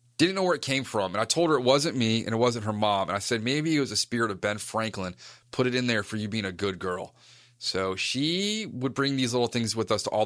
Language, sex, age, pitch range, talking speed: English, male, 30-49, 110-140 Hz, 290 wpm